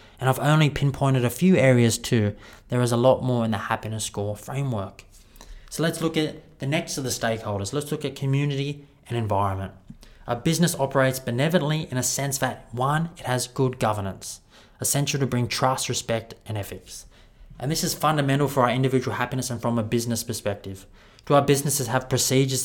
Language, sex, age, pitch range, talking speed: English, male, 20-39, 115-140 Hz, 190 wpm